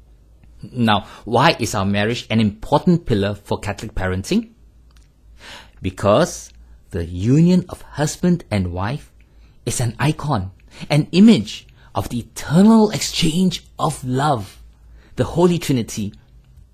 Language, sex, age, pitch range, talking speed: English, male, 50-69, 100-170 Hz, 115 wpm